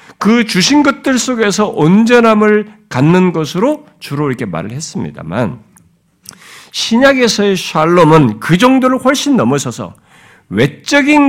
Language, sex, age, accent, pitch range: Korean, male, 50-69, native, 155-240 Hz